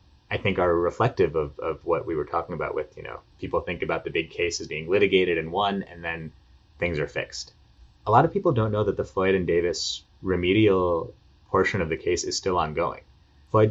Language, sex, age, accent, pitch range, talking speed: English, male, 30-49, American, 80-125 Hz, 220 wpm